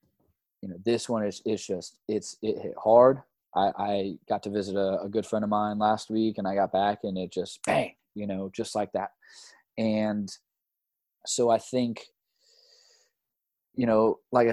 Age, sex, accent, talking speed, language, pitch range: 20-39, male, American, 180 wpm, English, 100-115 Hz